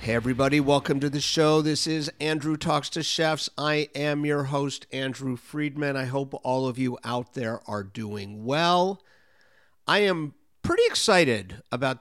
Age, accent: 50-69, American